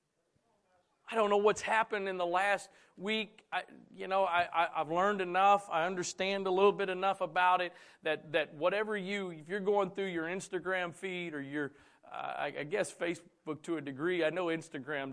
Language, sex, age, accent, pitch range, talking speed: English, male, 40-59, American, 140-185 Hz, 195 wpm